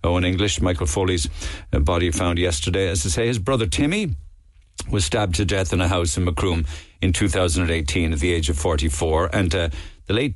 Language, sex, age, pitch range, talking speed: English, male, 60-79, 85-105 Hz, 205 wpm